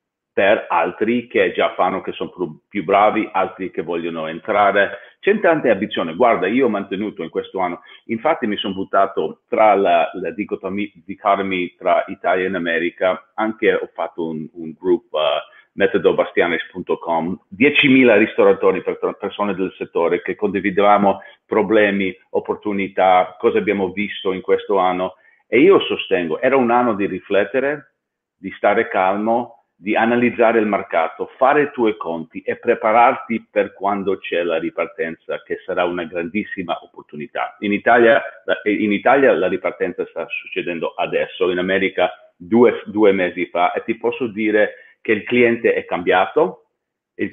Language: Italian